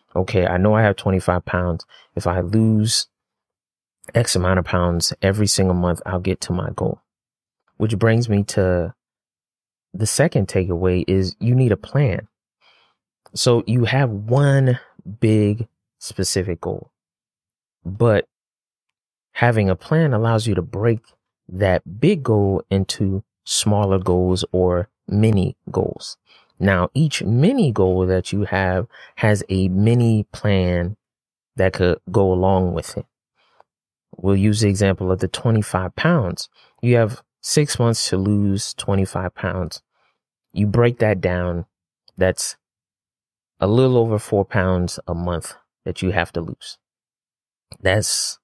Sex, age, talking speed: male, 30-49, 135 wpm